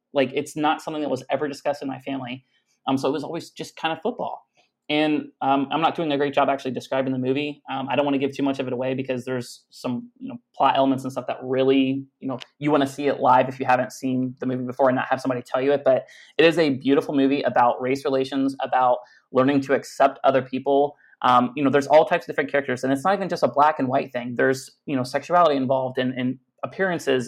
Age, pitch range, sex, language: 30-49, 130-150 Hz, male, English